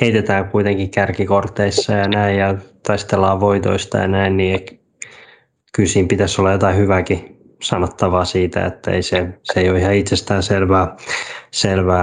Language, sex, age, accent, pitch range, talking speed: Finnish, male, 20-39, native, 95-110 Hz, 140 wpm